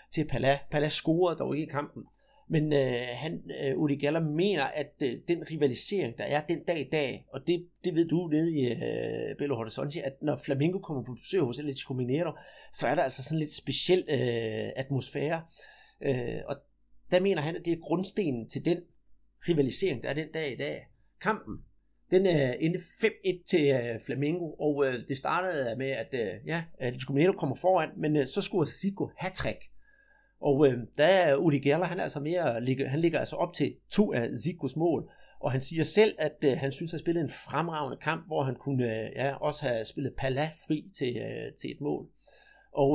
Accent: native